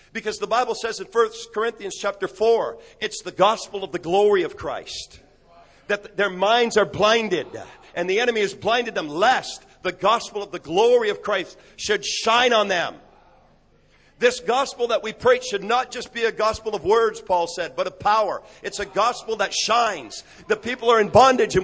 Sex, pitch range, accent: male, 180-245 Hz, American